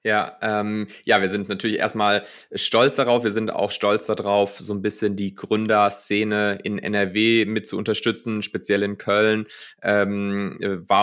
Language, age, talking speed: German, 20-39, 160 wpm